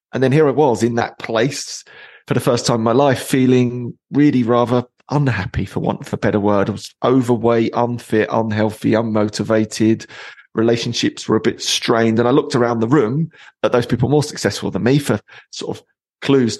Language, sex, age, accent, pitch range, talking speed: English, male, 30-49, British, 110-130 Hz, 190 wpm